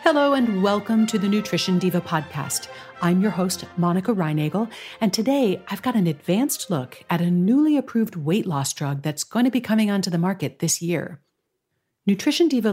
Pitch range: 165-220 Hz